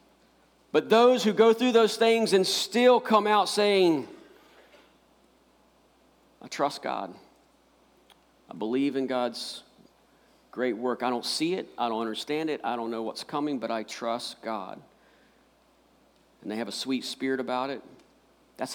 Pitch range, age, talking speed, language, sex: 115-160 Hz, 50-69, 150 wpm, English, male